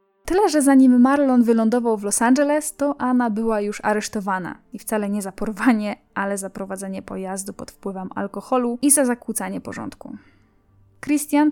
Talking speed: 155 wpm